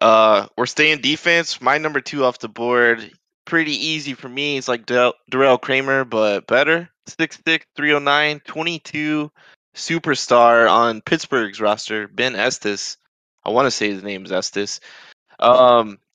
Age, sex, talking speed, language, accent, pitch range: 20-39, male, 150 wpm, English, American, 110-150 Hz